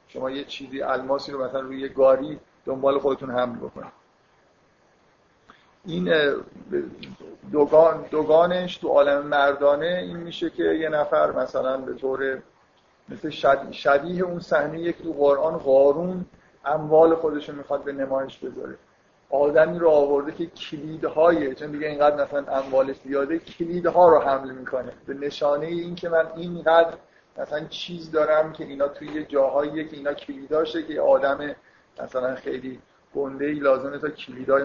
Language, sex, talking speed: Persian, male, 145 wpm